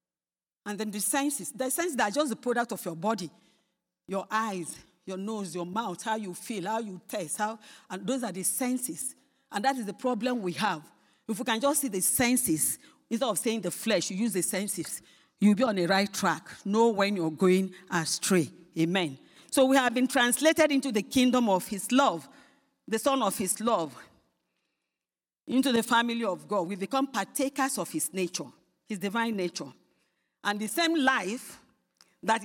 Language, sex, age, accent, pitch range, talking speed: English, female, 40-59, Nigerian, 180-260 Hz, 185 wpm